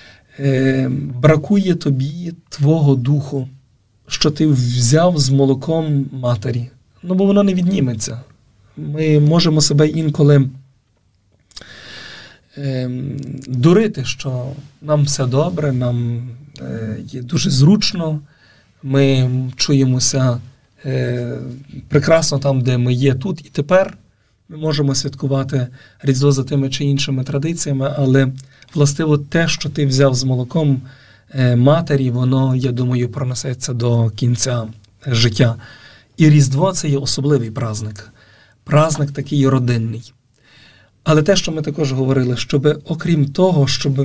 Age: 40-59